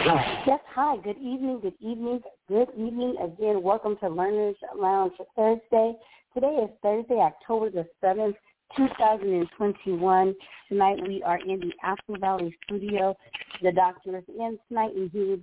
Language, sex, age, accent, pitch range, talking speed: English, female, 40-59, American, 180-210 Hz, 150 wpm